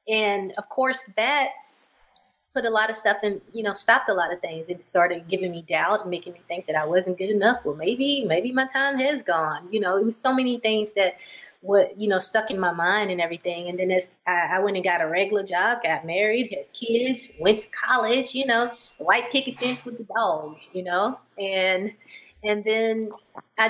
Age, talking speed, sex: 20-39, 220 wpm, female